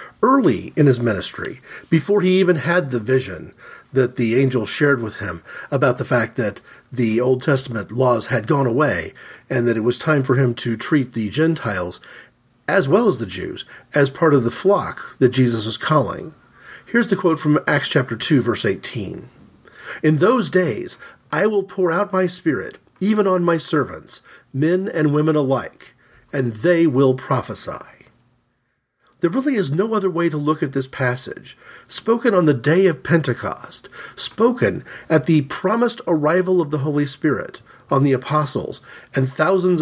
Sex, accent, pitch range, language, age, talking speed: male, American, 130-180 Hz, English, 40-59, 170 wpm